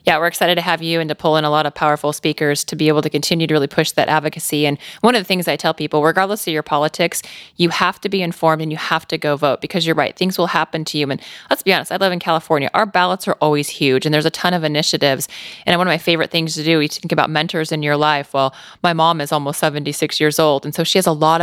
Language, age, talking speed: English, 20-39, 290 wpm